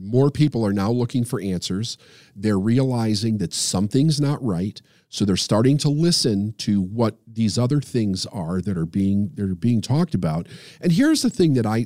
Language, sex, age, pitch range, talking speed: English, male, 40-59, 95-140 Hz, 180 wpm